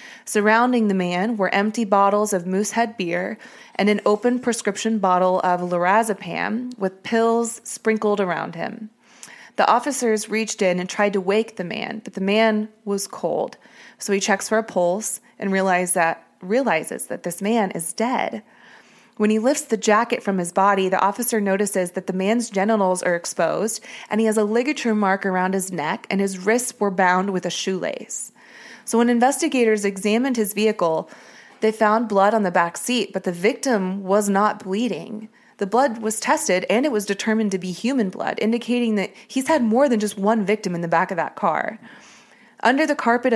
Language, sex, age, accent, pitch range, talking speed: English, female, 20-39, American, 190-230 Hz, 185 wpm